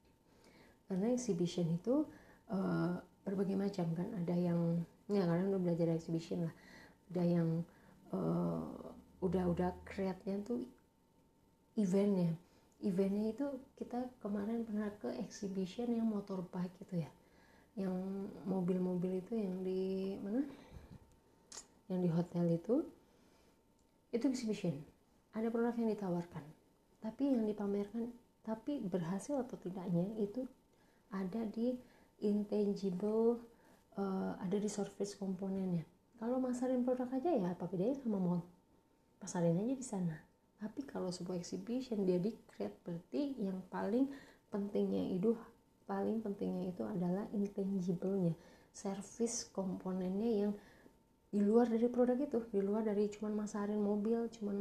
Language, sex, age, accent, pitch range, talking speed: English, female, 30-49, Indonesian, 180-230 Hz, 120 wpm